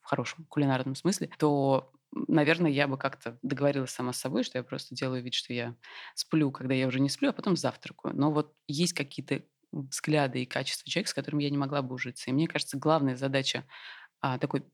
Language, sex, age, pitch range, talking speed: Russian, female, 20-39, 130-155 Hz, 205 wpm